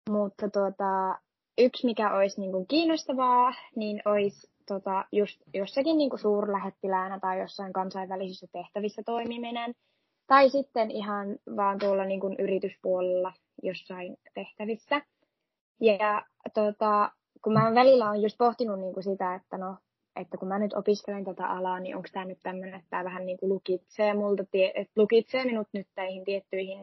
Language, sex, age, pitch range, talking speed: Finnish, female, 20-39, 195-230 Hz, 145 wpm